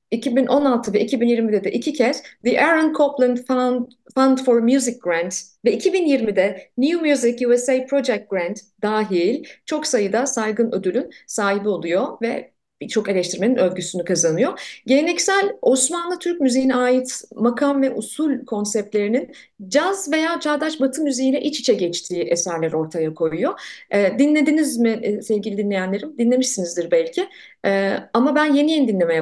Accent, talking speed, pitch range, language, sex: native, 135 wpm, 190-280 Hz, Turkish, female